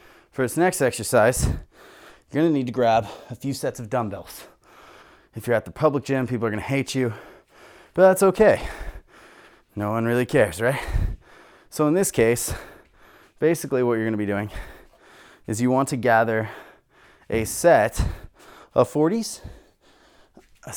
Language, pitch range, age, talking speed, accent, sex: English, 110-150 Hz, 20-39, 160 wpm, American, male